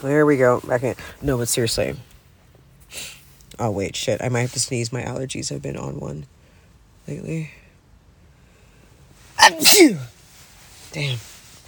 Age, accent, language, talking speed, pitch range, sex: 30-49, American, English, 125 wpm, 95-130 Hz, female